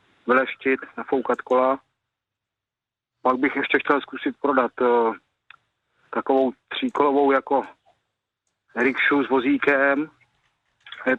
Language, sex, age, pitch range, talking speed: Czech, male, 40-59, 125-145 Hz, 90 wpm